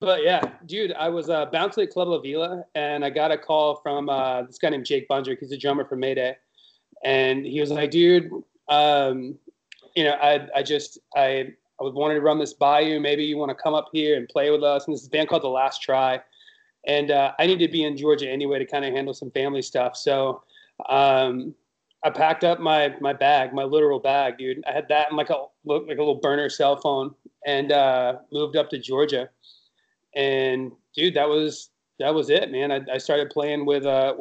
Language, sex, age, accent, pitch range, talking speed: English, male, 30-49, American, 135-155 Hz, 225 wpm